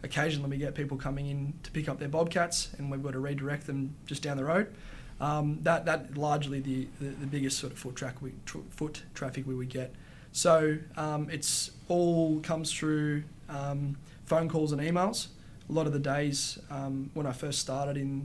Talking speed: 200 wpm